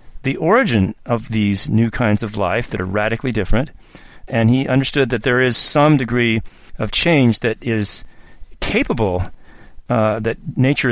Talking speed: 155 wpm